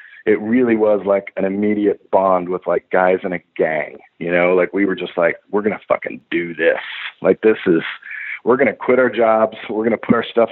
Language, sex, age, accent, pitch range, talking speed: English, male, 40-59, American, 95-110 Hz, 235 wpm